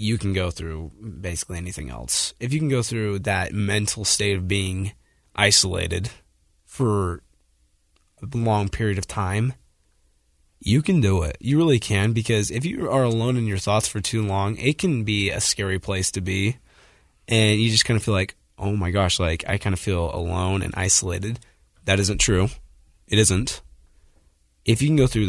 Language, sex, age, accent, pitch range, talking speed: English, male, 20-39, American, 90-115 Hz, 185 wpm